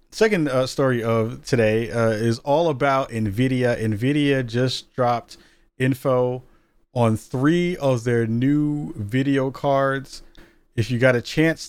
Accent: American